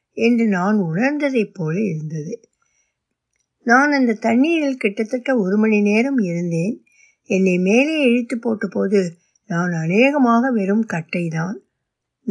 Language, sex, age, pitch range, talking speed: Tamil, female, 60-79, 185-255 Hz, 100 wpm